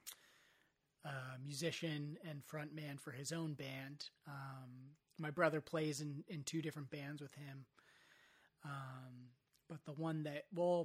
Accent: American